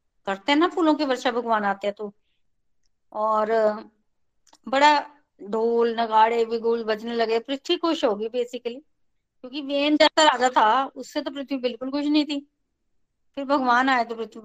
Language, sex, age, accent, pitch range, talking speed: Hindi, female, 20-39, native, 235-295 Hz, 115 wpm